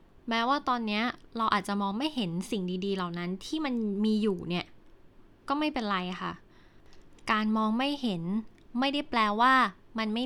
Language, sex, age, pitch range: Thai, female, 10-29, 200-255 Hz